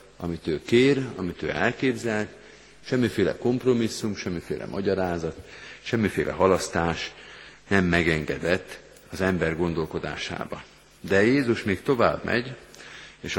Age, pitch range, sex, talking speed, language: 50-69, 85-115 Hz, male, 105 wpm, Hungarian